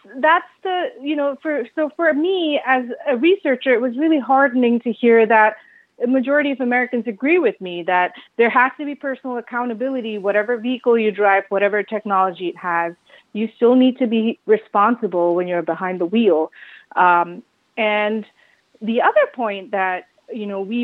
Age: 30-49